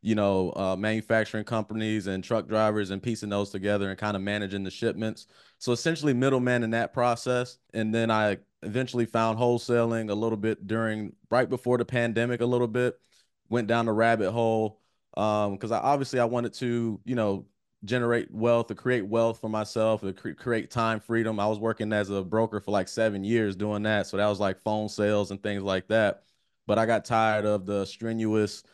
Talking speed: 200 wpm